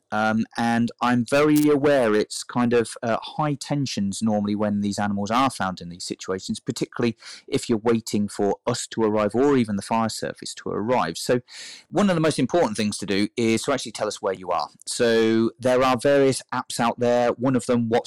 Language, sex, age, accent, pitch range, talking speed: English, male, 30-49, British, 100-125 Hz, 210 wpm